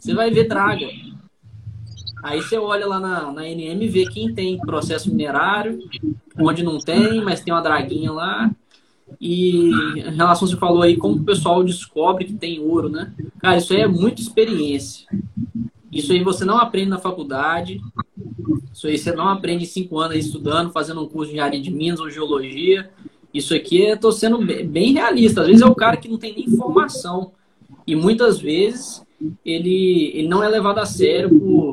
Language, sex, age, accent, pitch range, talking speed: Portuguese, male, 20-39, Brazilian, 160-210 Hz, 185 wpm